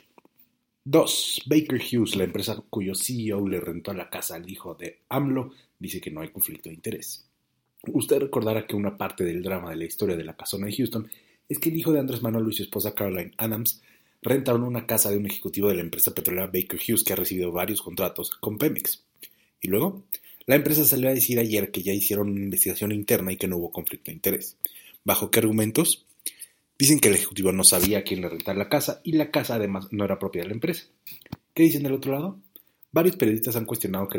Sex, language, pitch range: male, Spanish, 95-125 Hz